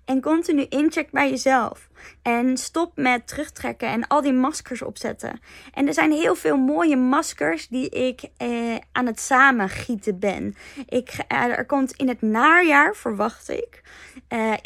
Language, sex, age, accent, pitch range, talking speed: Dutch, female, 20-39, Dutch, 225-265 Hz, 155 wpm